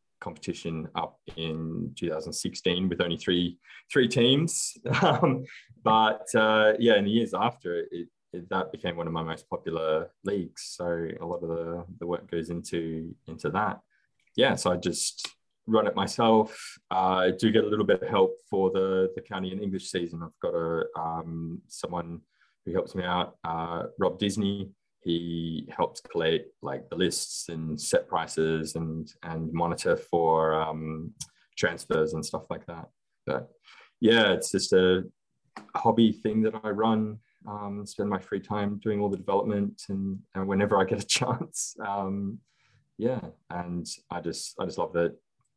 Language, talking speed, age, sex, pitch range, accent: English, 170 wpm, 20-39, male, 85-105 Hz, Australian